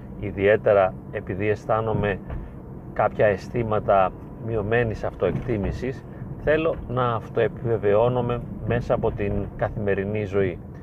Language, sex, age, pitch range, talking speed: Greek, male, 30-49, 105-125 Hz, 85 wpm